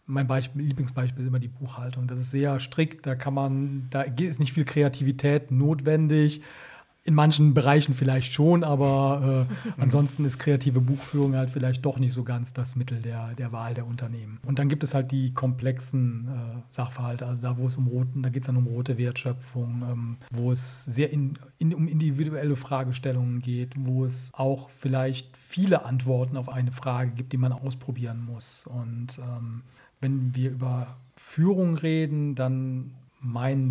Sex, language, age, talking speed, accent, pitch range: male, German, 40-59, 175 wpm, German, 125-140 Hz